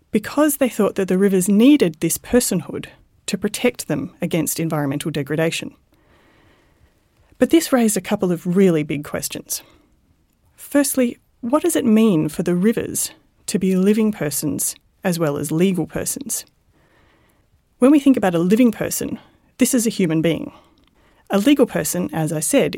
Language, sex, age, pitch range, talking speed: English, female, 30-49, 170-245 Hz, 155 wpm